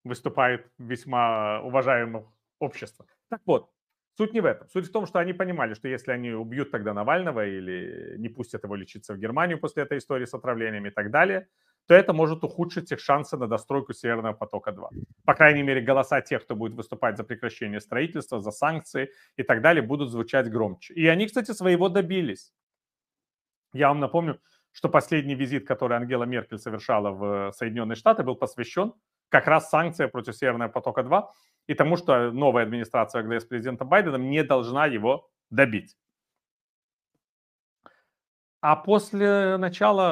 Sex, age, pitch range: male, 30-49, 120-175 Hz